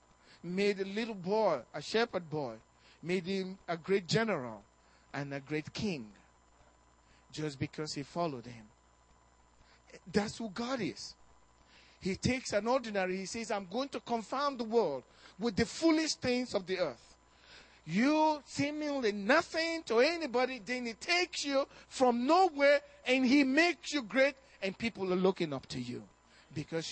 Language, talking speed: English, 150 wpm